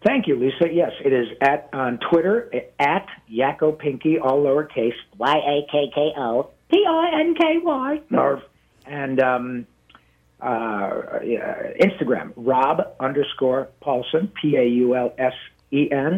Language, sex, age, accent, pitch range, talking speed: English, male, 50-69, American, 120-145 Hz, 95 wpm